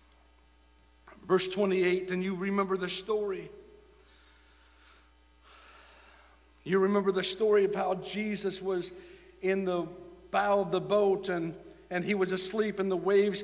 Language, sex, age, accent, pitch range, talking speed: English, male, 60-79, American, 180-205 Hz, 130 wpm